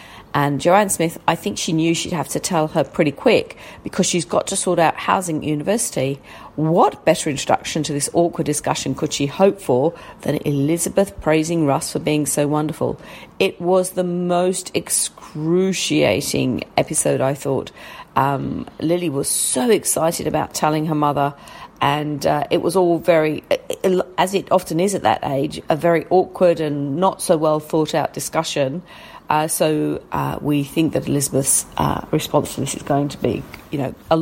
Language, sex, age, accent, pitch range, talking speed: English, female, 40-59, British, 150-185 Hz, 175 wpm